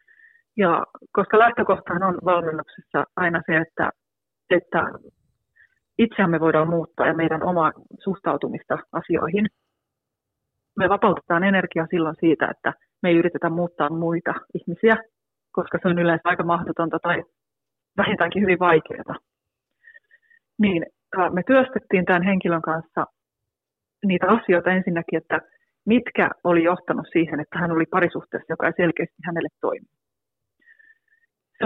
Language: Finnish